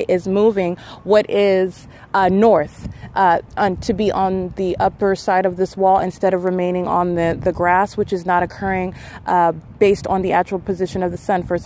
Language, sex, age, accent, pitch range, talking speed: English, female, 30-49, American, 170-195 Hz, 190 wpm